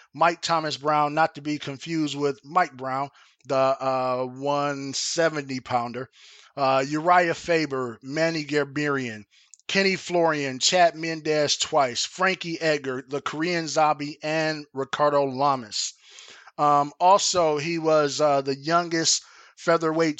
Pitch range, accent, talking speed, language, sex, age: 140-165 Hz, American, 115 wpm, English, male, 20-39